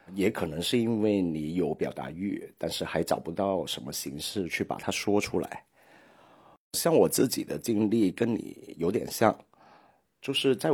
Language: Chinese